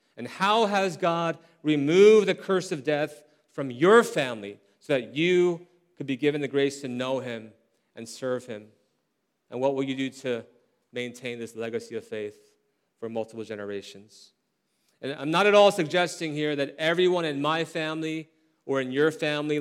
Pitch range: 140-185 Hz